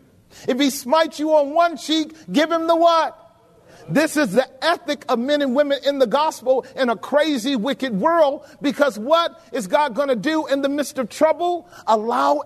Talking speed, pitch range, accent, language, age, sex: 195 wpm, 230-300 Hz, American, English, 40-59, male